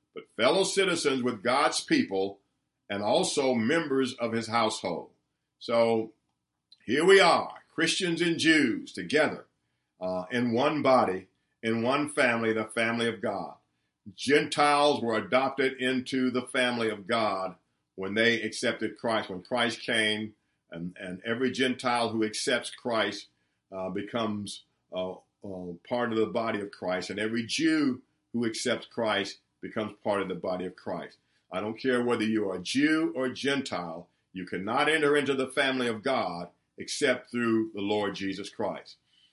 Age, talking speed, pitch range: 50-69, 150 wpm, 105-135 Hz